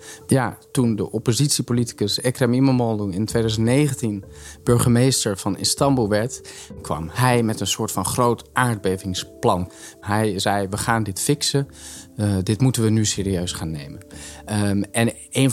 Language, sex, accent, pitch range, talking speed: Dutch, male, Dutch, 105-130 Hz, 145 wpm